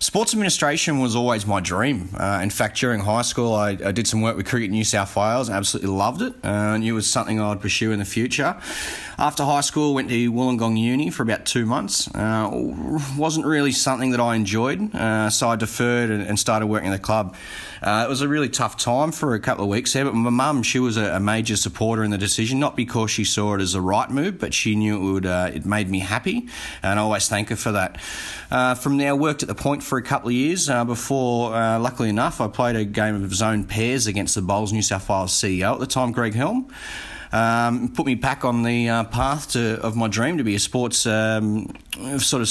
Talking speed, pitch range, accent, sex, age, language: 250 wpm, 105-125 Hz, Australian, male, 30-49, English